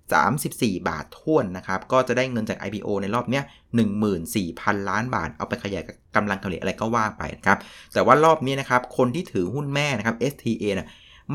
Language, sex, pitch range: Thai, male, 105-135 Hz